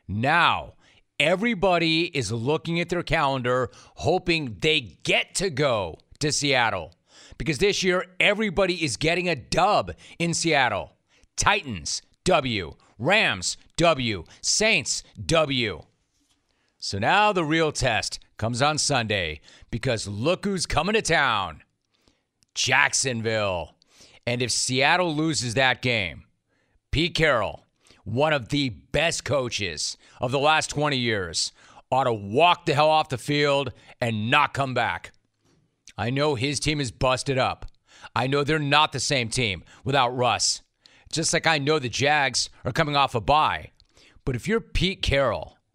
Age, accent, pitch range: 40-59, American, 125-165 Hz